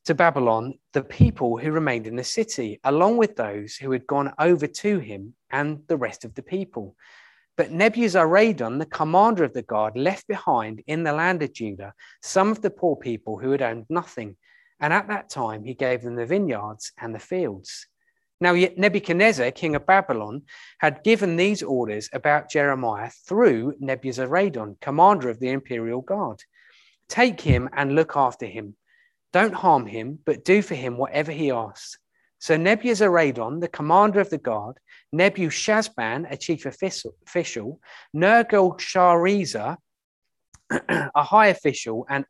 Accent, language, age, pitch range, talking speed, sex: British, English, 30-49, 125-190 Hz, 155 wpm, male